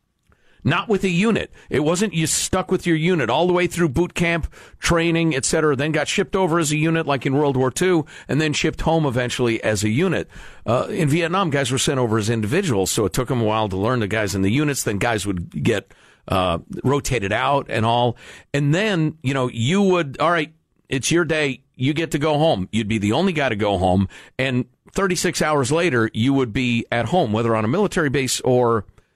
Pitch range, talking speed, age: 120-170 Hz, 225 wpm, 50-69